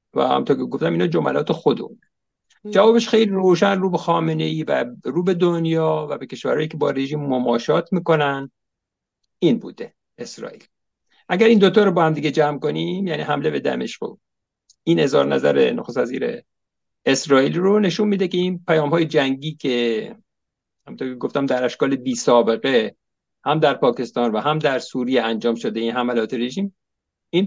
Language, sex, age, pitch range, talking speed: English, male, 50-69, 140-190 Hz, 165 wpm